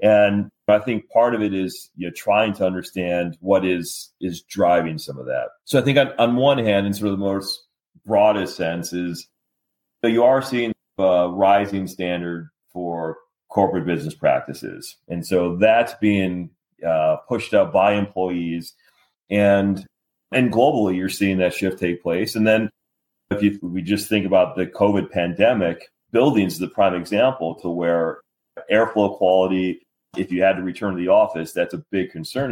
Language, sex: English, male